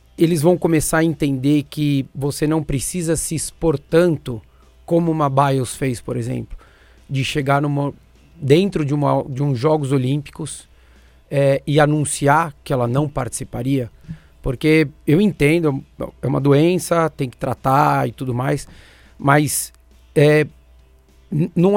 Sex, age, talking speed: male, 40-59, 140 wpm